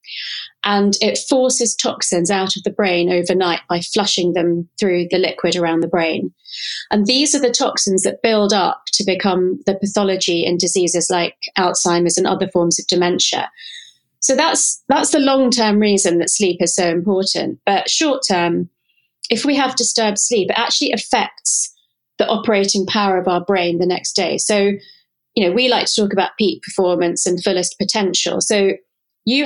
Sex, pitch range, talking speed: female, 180-220 Hz, 175 wpm